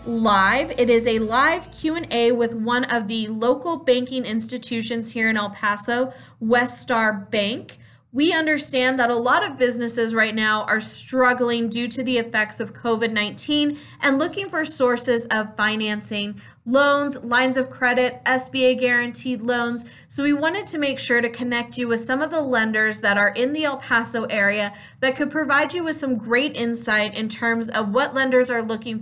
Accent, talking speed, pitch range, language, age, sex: American, 180 wpm, 225-270 Hz, English, 20-39, female